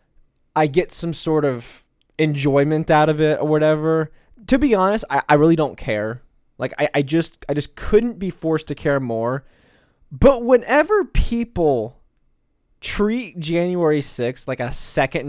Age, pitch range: 20-39, 140-210 Hz